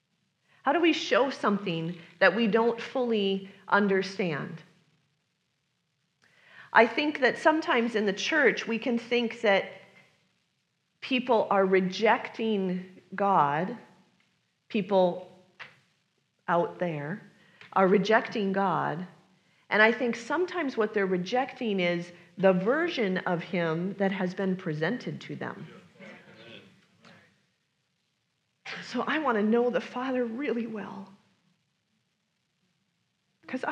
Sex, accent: female, American